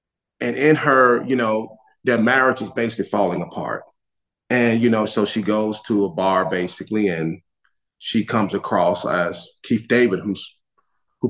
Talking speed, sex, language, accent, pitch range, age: 160 wpm, male, English, American, 95-125 Hz, 30-49